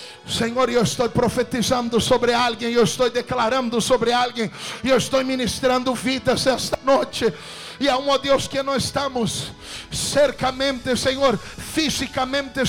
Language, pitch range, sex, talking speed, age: English, 260-295 Hz, male, 130 wpm, 50-69